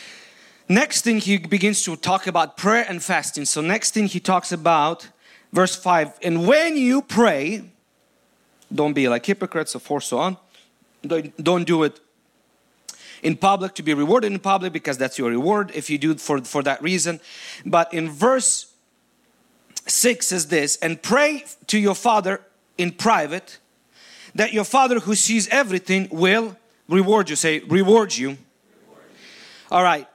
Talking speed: 155 wpm